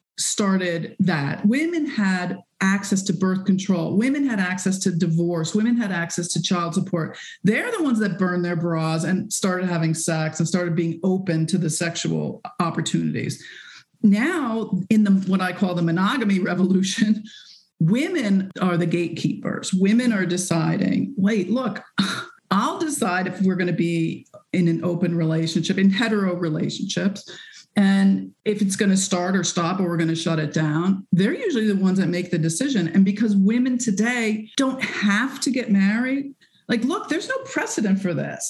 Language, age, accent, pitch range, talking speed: English, 40-59, American, 175-215 Hz, 170 wpm